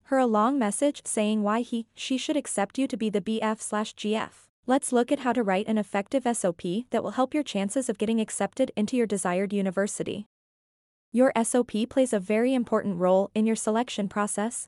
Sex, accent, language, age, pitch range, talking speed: female, American, English, 20-39, 200-250 Hz, 190 wpm